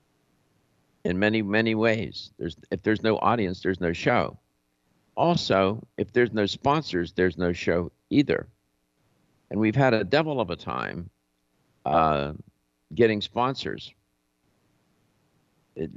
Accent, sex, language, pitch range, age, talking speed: American, male, English, 70-110 Hz, 60-79, 125 wpm